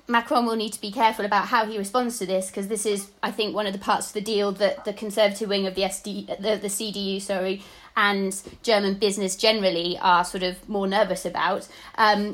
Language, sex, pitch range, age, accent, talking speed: English, female, 190-225 Hz, 30-49, British, 225 wpm